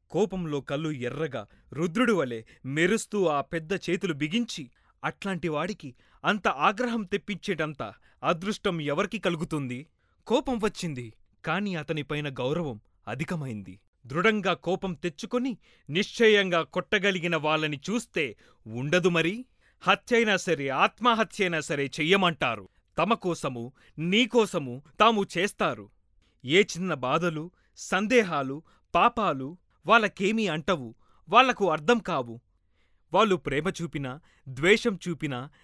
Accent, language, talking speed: native, Telugu, 95 wpm